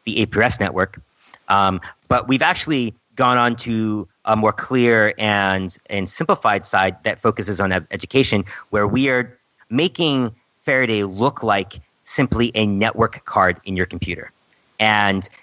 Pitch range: 100-125 Hz